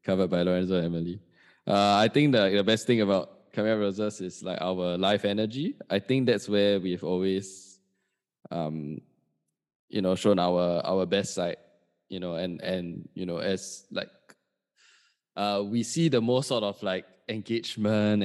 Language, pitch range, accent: English, 90-110 Hz, Malaysian